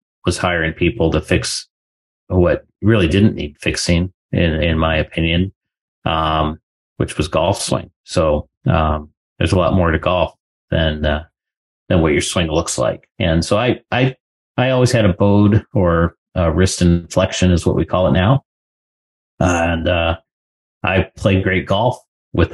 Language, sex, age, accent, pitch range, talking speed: English, male, 30-49, American, 80-95 Hz, 160 wpm